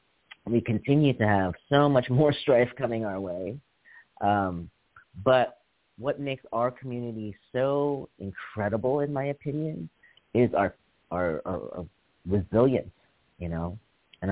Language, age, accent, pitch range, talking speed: English, 30-49, American, 95-125 Hz, 125 wpm